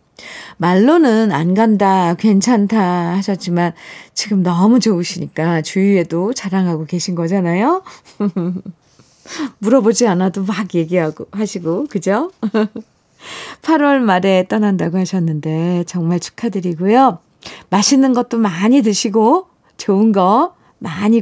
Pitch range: 175-225 Hz